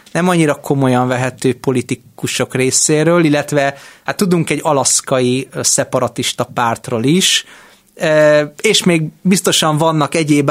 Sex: male